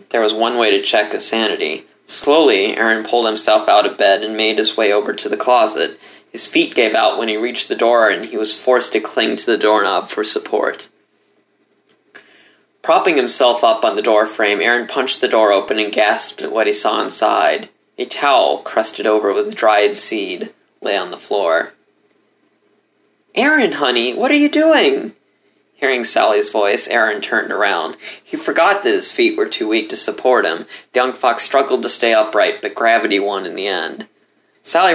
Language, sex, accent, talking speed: English, male, American, 185 wpm